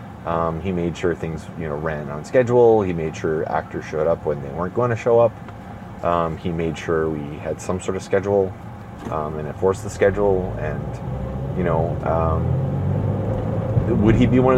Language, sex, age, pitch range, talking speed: English, male, 30-49, 85-110 Hz, 190 wpm